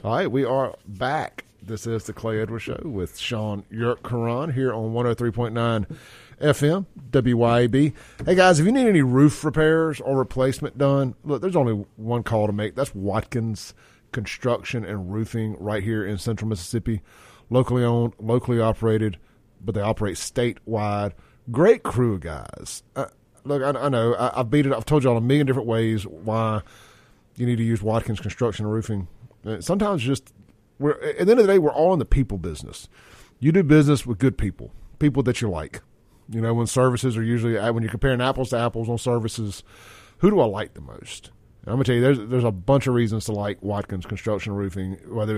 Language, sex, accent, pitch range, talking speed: English, male, American, 105-130 Hz, 195 wpm